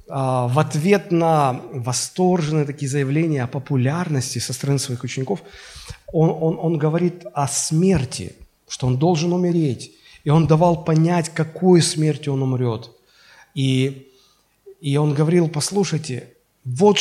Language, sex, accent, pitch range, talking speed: Russian, male, native, 135-185 Hz, 125 wpm